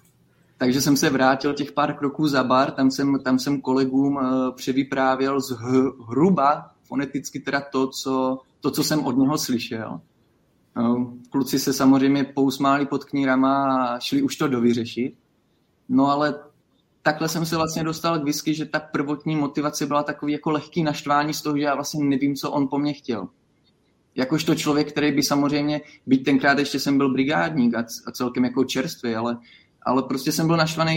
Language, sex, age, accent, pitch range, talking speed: Czech, male, 20-39, native, 130-145 Hz, 175 wpm